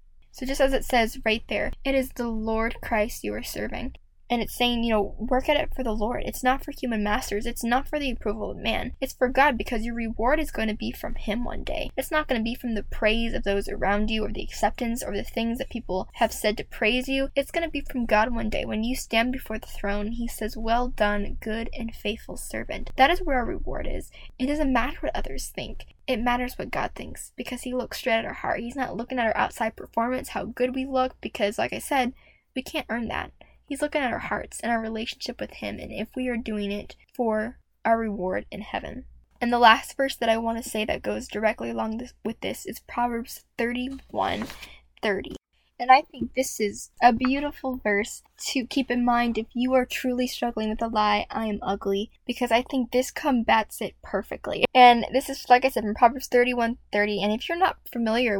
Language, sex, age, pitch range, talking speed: English, female, 10-29, 215-255 Hz, 235 wpm